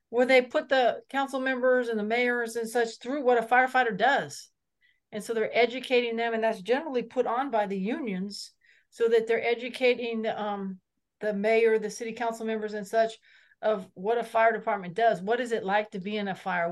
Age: 40-59